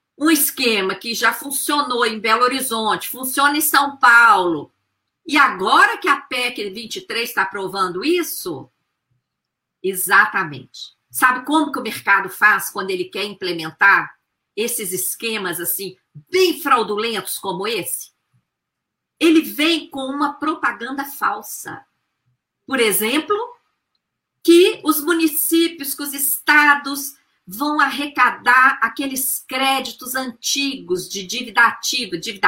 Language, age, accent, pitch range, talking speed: Portuguese, 50-69, Brazilian, 220-290 Hz, 115 wpm